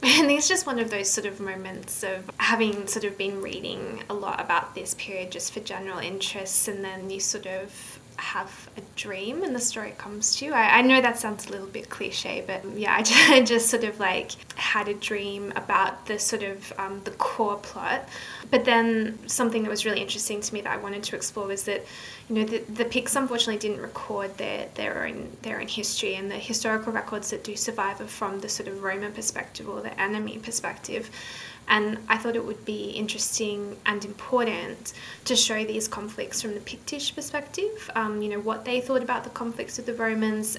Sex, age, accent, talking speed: female, 20-39, Australian, 215 wpm